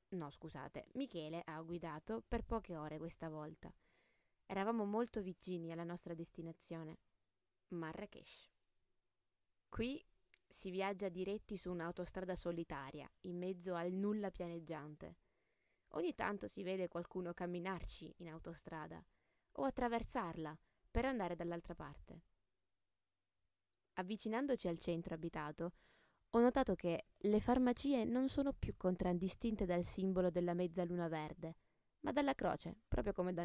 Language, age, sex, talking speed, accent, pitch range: Italian, 20-39, female, 120 wpm, native, 165-210 Hz